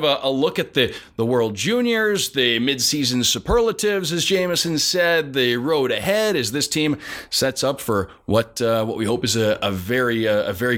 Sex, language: male, English